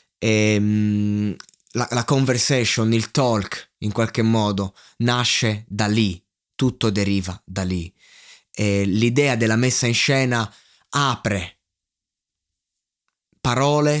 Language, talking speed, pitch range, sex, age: Italian, 95 wpm, 105-135 Hz, male, 20-39